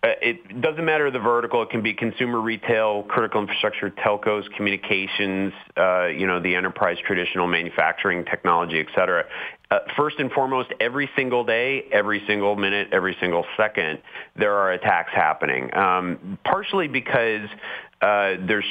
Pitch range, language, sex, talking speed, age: 90-115 Hz, English, male, 150 wpm, 30-49